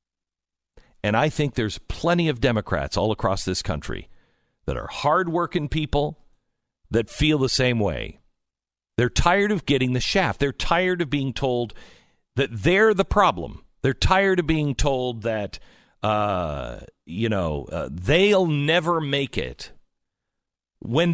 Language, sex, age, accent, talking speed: English, male, 50-69, American, 140 wpm